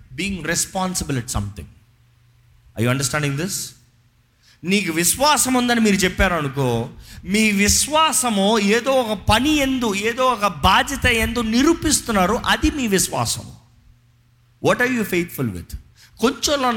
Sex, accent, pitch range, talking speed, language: male, native, 120-200 Hz, 120 wpm, Telugu